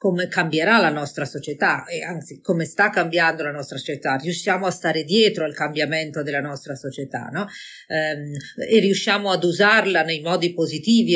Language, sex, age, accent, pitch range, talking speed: Italian, female, 40-59, native, 155-200 Hz, 160 wpm